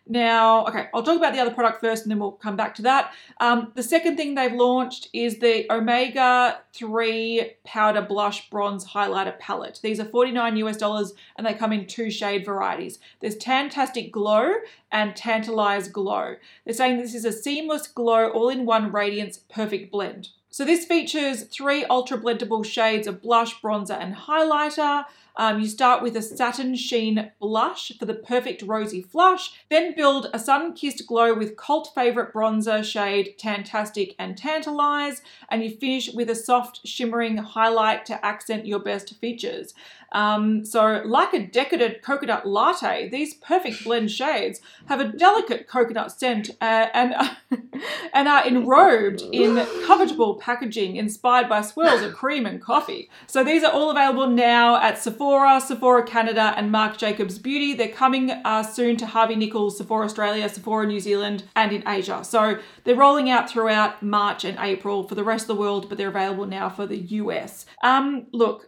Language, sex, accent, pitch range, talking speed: English, female, Australian, 215-260 Hz, 170 wpm